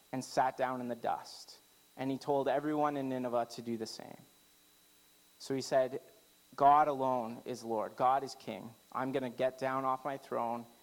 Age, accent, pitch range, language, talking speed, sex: 30-49, American, 120-150 Hz, English, 190 wpm, male